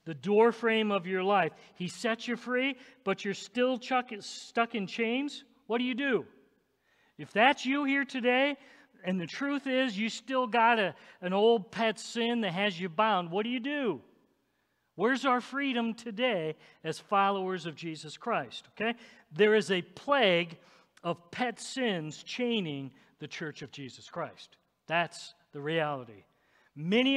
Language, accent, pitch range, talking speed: English, American, 170-245 Hz, 160 wpm